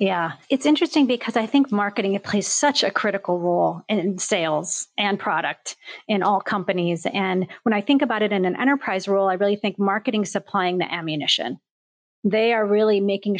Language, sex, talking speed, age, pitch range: English, female, 185 wpm, 30-49, 175-210 Hz